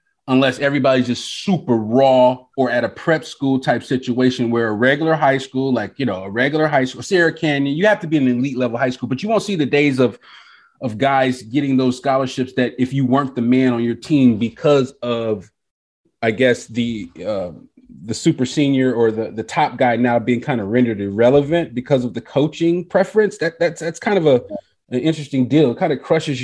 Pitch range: 115-145 Hz